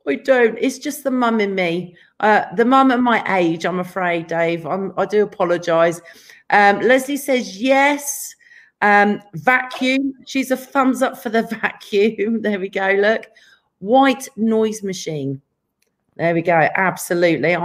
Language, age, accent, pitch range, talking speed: English, 40-59, British, 180-255 Hz, 155 wpm